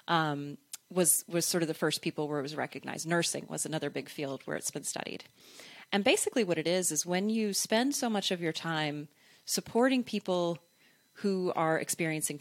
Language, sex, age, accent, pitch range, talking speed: English, female, 30-49, American, 155-205 Hz, 195 wpm